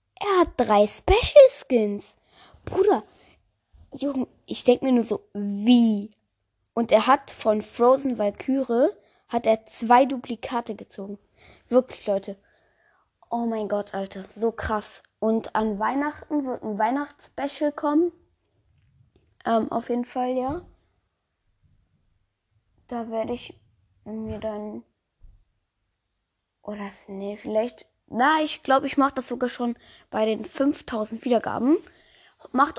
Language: German